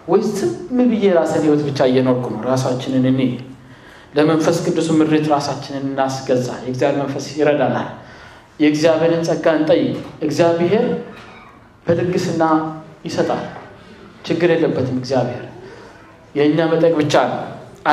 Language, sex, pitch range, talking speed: Amharic, male, 140-170 Hz, 95 wpm